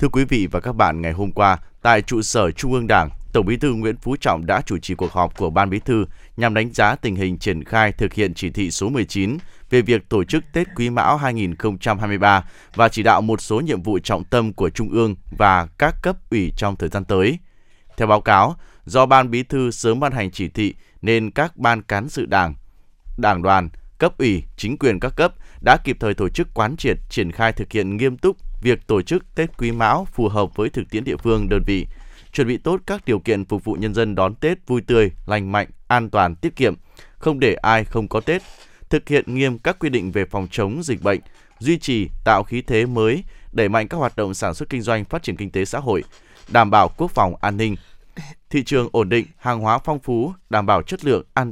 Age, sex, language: 20-39, male, Vietnamese